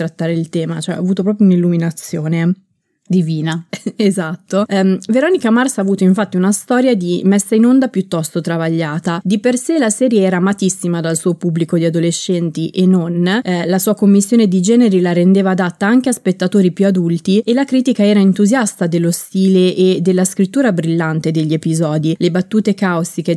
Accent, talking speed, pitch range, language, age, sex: native, 170 wpm, 170-220 Hz, Italian, 20-39, female